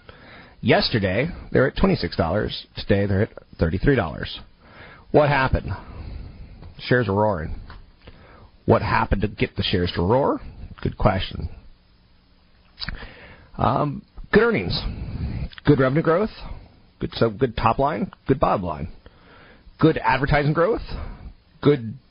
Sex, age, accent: male, 40-59, American